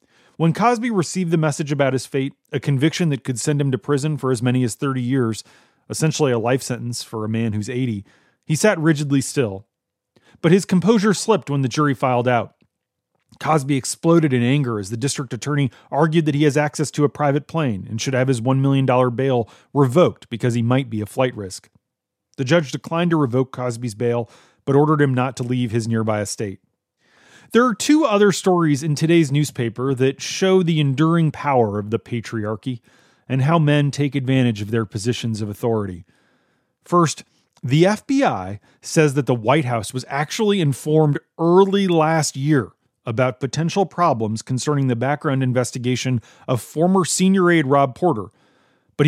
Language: English